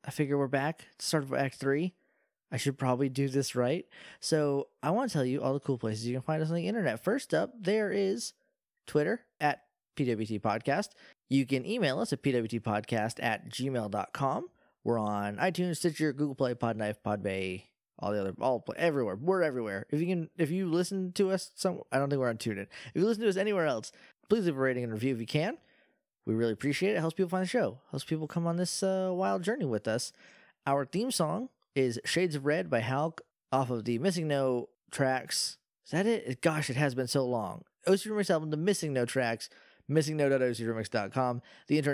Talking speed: 215 wpm